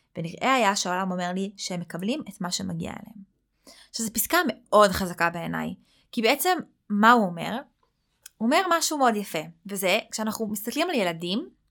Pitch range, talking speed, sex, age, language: 195-255 Hz, 160 wpm, female, 20-39, Hebrew